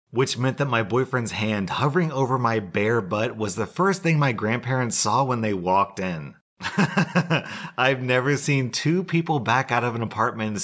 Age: 30-49